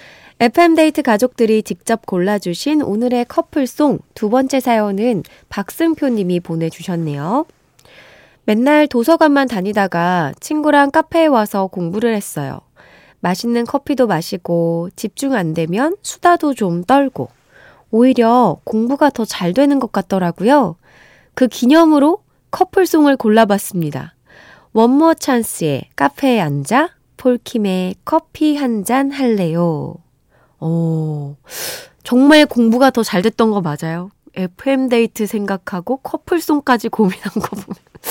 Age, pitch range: 20-39, 180-270 Hz